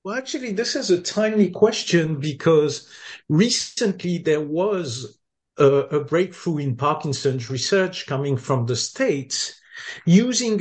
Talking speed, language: 125 wpm, English